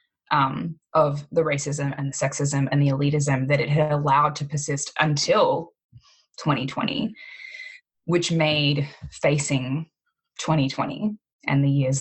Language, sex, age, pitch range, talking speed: English, female, 10-29, 140-165 Hz, 125 wpm